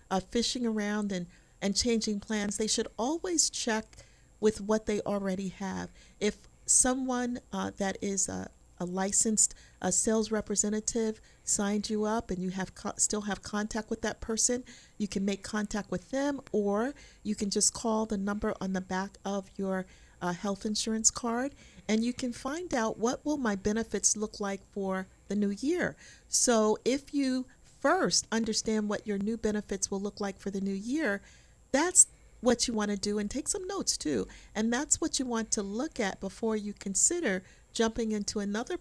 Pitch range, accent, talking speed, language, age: 195-230 Hz, American, 180 wpm, English, 40-59